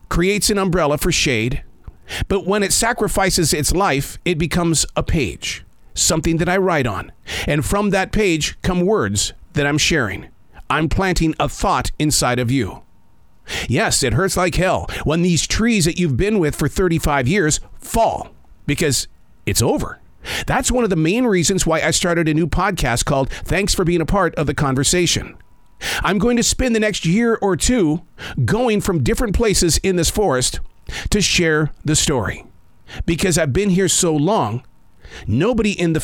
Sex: male